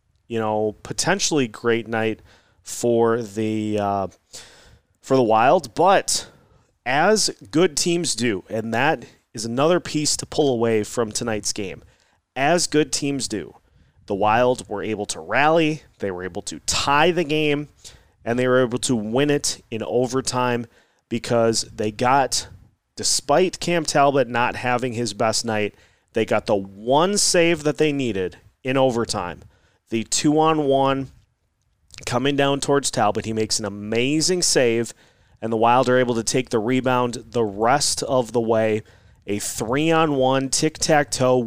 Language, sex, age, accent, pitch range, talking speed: English, male, 30-49, American, 110-140 Hz, 150 wpm